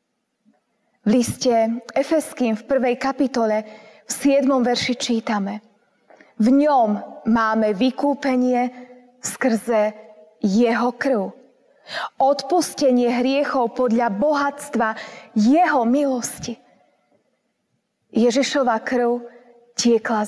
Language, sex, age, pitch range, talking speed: Slovak, female, 20-39, 230-275 Hz, 75 wpm